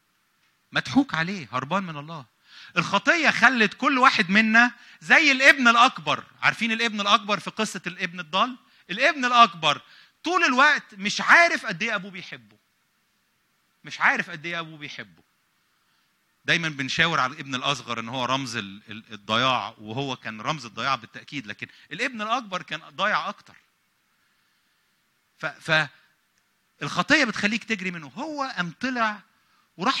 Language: English